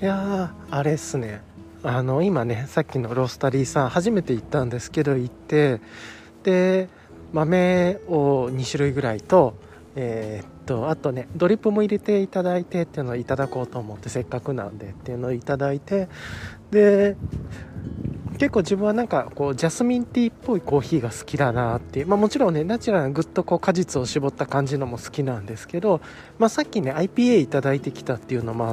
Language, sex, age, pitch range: Japanese, male, 20-39, 130-195 Hz